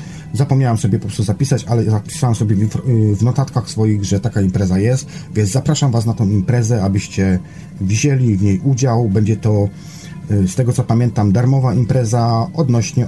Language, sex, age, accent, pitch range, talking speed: Polish, male, 40-59, native, 105-135 Hz, 160 wpm